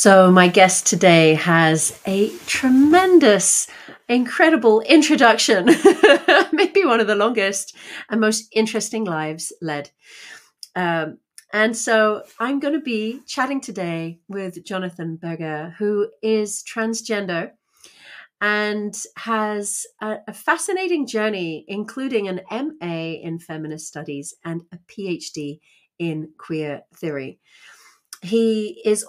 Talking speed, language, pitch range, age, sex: 110 wpm, English, 165-220 Hz, 40-59, female